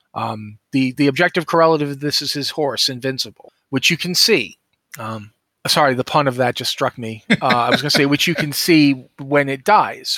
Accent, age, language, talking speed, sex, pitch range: American, 40-59, English, 210 wpm, male, 130-170 Hz